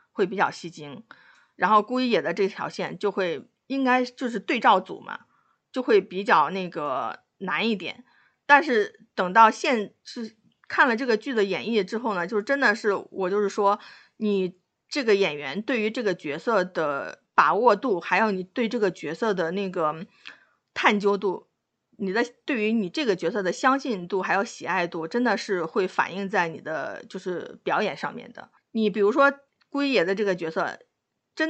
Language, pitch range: Chinese, 185-240 Hz